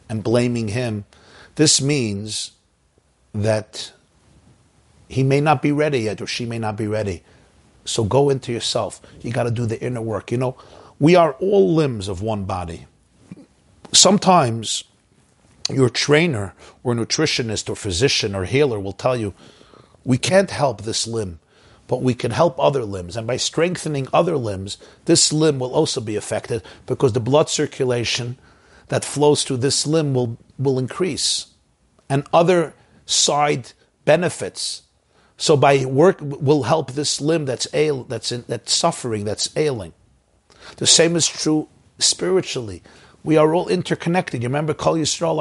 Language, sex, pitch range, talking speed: English, male, 110-150 Hz, 150 wpm